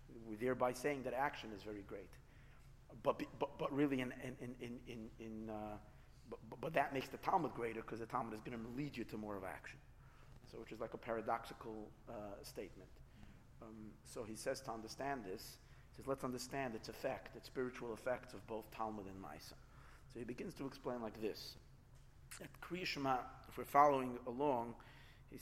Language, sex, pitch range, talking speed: English, male, 110-135 Hz, 190 wpm